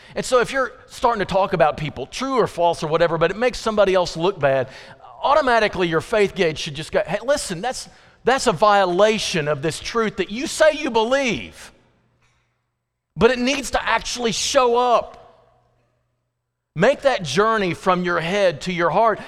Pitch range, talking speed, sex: 170-230 Hz, 180 wpm, male